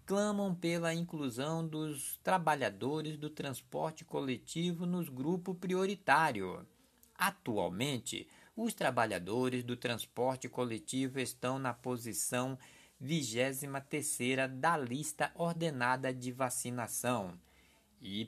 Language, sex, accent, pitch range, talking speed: Portuguese, male, Brazilian, 125-180 Hz, 90 wpm